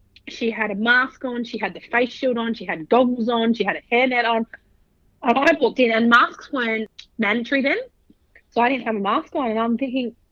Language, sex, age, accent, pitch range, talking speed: English, female, 30-49, Australian, 205-260 Hz, 225 wpm